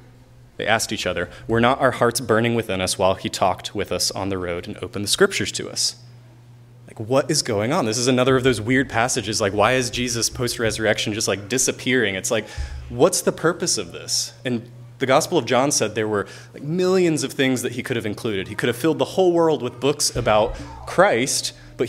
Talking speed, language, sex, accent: 220 wpm, English, male, American